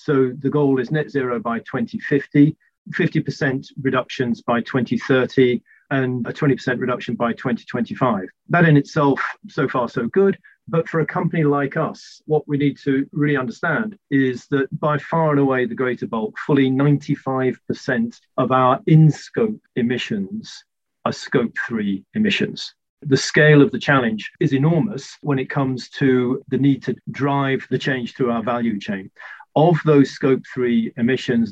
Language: English